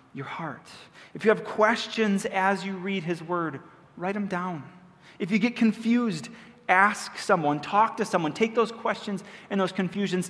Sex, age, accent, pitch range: male, 30-49, American, 150-200 Hz